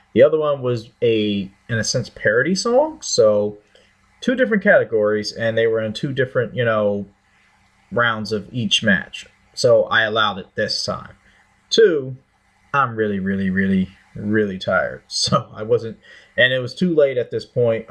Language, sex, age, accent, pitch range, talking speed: English, male, 30-49, American, 100-120 Hz, 170 wpm